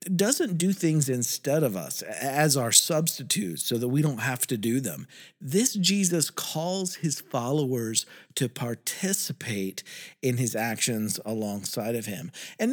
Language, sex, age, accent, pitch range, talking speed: English, male, 50-69, American, 120-175 Hz, 145 wpm